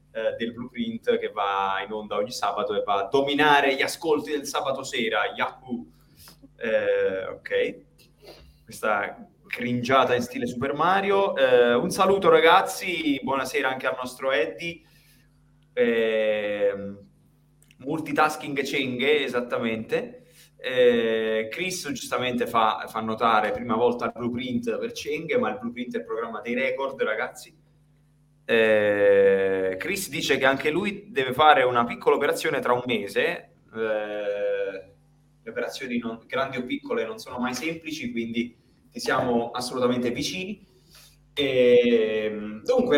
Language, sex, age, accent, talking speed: Italian, male, 20-39, native, 125 wpm